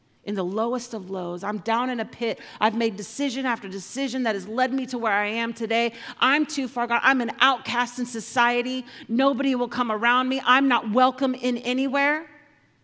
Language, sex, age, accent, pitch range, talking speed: English, female, 40-59, American, 170-250 Hz, 200 wpm